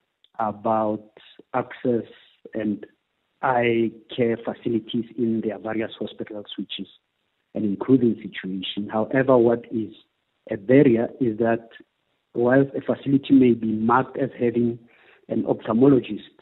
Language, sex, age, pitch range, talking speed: English, male, 50-69, 110-125 Hz, 115 wpm